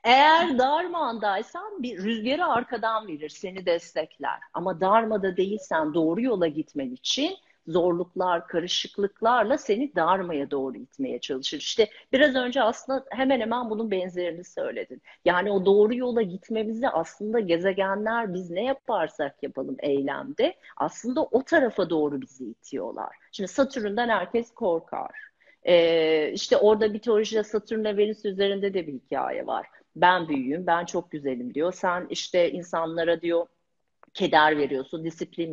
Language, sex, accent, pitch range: Turkish, female, native, 175-240 Hz